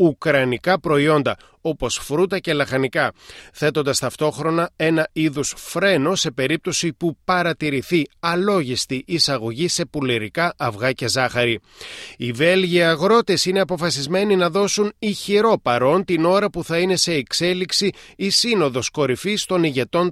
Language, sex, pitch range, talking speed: Greek, male, 135-180 Hz, 130 wpm